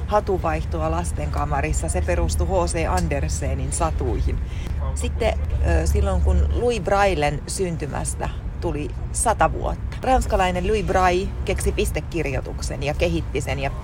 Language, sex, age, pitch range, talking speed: Finnish, female, 30-49, 75-90 Hz, 110 wpm